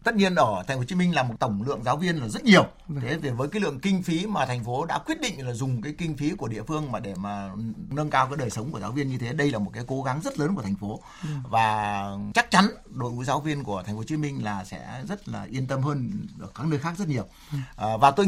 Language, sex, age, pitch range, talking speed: Vietnamese, male, 60-79, 125-195 Hz, 295 wpm